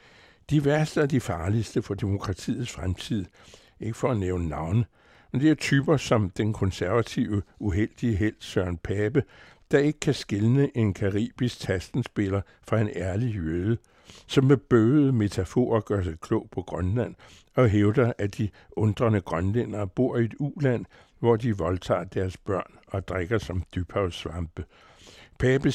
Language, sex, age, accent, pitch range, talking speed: Danish, male, 60-79, American, 95-120 Hz, 150 wpm